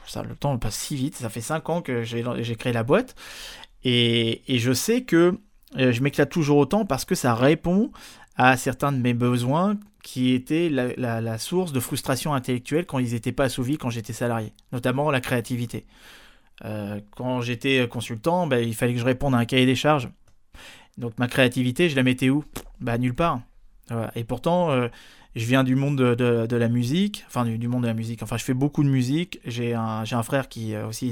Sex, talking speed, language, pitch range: male, 210 wpm, French, 120-145 Hz